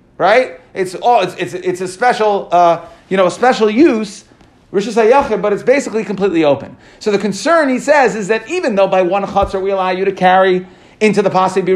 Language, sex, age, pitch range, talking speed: English, male, 40-59, 190-250 Hz, 210 wpm